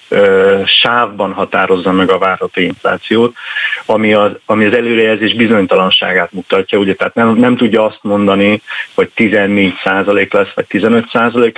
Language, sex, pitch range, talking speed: Hungarian, male, 100-120 Hz, 140 wpm